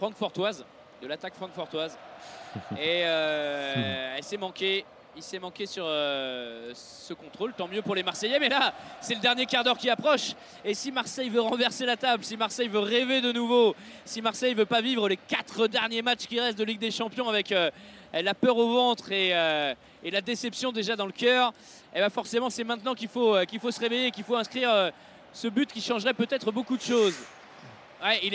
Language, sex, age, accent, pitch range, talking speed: French, male, 20-39, French, 195-235 Hz, 205 wpm